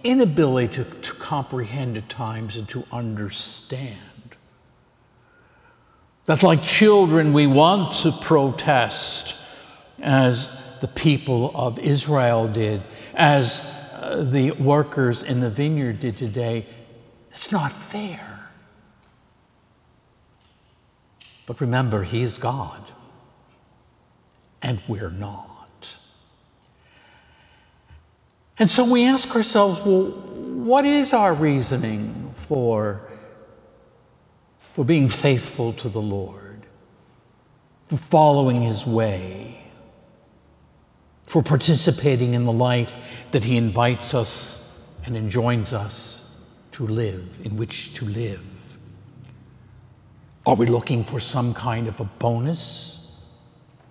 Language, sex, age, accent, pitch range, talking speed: English, male, 60-79, American, 115-145 Hz, 100 wpm